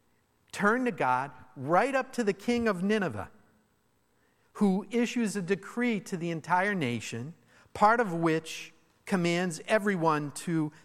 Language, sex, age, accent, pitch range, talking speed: English, male, 50-69, American, 125-210 Hz, 135 wpm